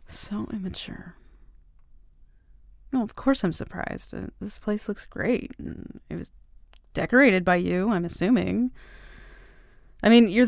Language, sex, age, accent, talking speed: English, female, 20-39, American, 125 wpm